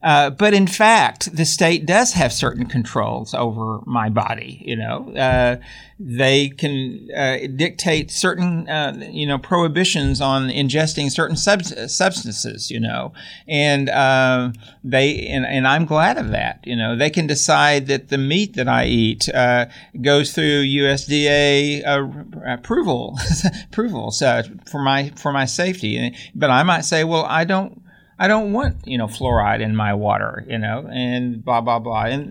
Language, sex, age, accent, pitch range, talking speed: English, male, 50-69, American, 120-160 Hz, 165 wpm